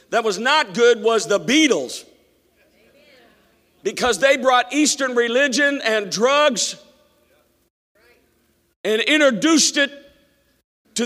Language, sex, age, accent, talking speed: English, male, 50-69, American, 100 wpm